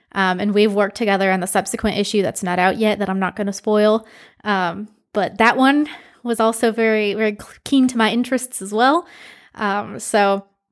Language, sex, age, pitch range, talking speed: English, female, 20-39, 200-230 Hz, 195 wpm